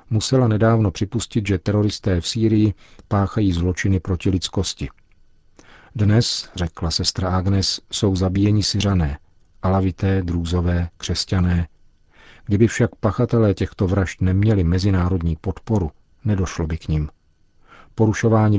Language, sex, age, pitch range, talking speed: Czech, male, 40-59, 85-105 Hz, 110 wpm